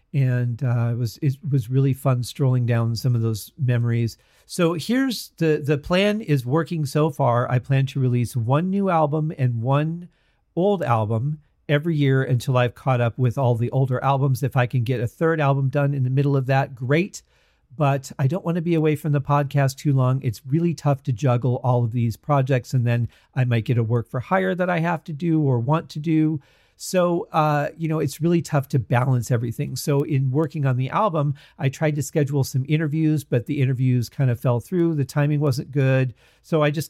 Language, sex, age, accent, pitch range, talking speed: English, male, 40-59, American, 125-160 Hz, 220 wpm